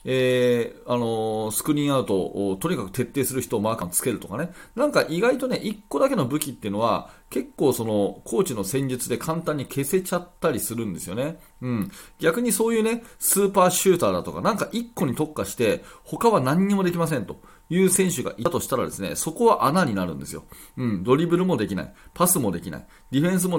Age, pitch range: 30-49, 120-190 Hz